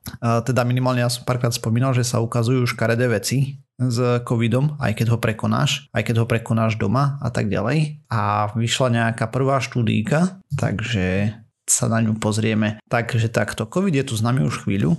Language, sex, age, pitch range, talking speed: Slovak, male, 30-49, 110-130 Hz, 175 wpm